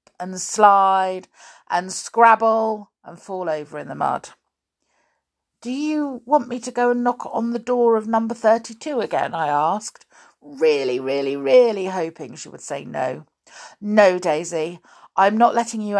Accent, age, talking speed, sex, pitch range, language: British, 50-69, 155 wpm, female, 165-240 Hz, English